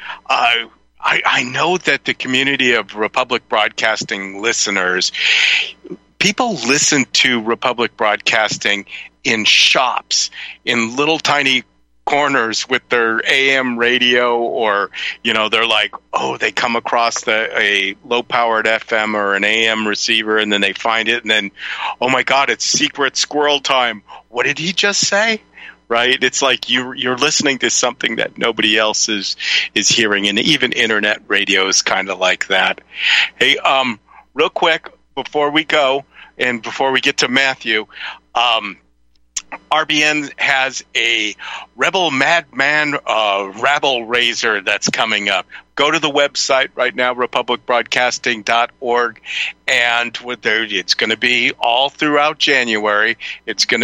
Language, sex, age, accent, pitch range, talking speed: English, male, 50-69, American, 115-135 Hz, 140 wpm